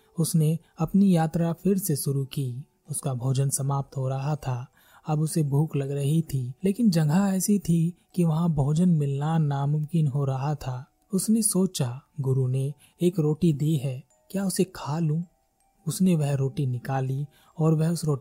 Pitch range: 135-175 Hz